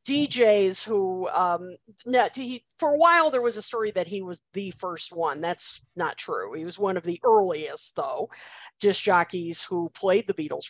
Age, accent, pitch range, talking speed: 50-69, American, 170-225 Hz, 180 wpm